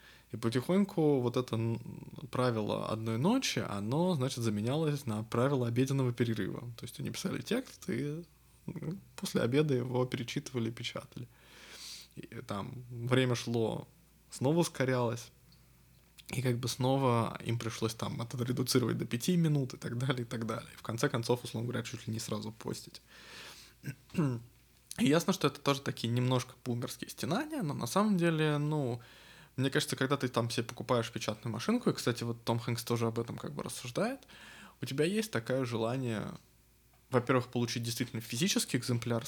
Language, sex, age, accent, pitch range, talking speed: Russian, male, 20-39, native, 115-140 Hz, 155 wpm